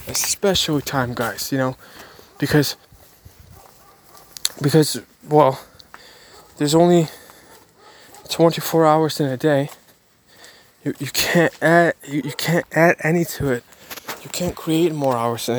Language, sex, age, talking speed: English, male, 20-39, 125 wpm